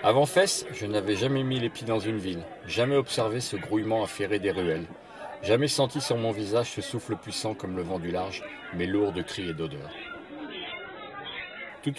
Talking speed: 190 wpm